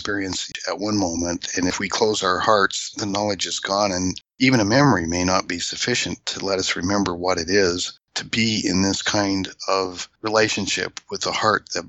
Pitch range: 95-110 Hz